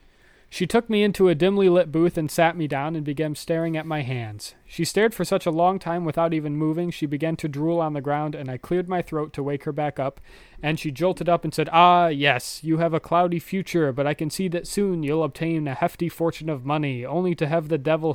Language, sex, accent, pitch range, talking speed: English, male, American, 140-165 Hz, 250 wpm